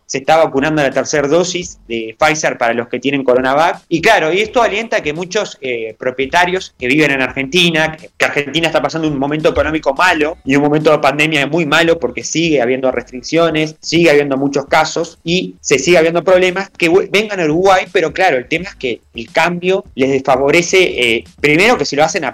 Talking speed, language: 210 wpm, Spanish